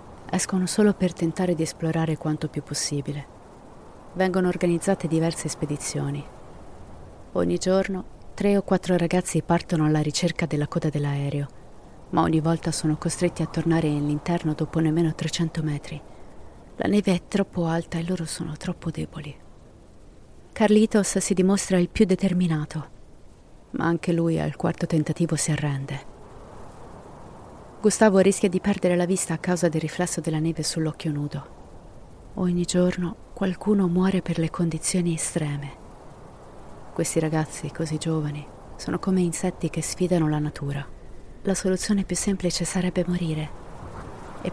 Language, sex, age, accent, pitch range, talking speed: Italian, female, 30-49, native, 155-180 Hz, 135 wpm